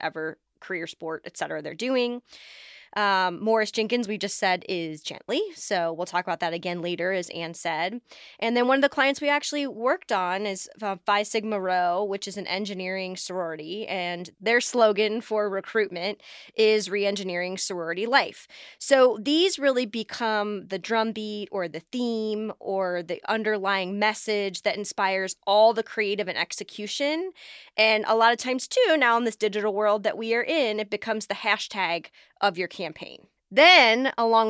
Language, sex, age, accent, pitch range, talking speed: English, female, 20-39, American, 185-230 Hz, 170 wpm